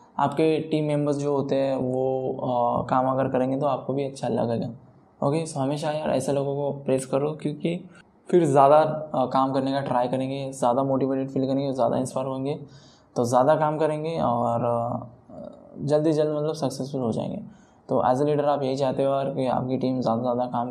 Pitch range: 130-140 Hz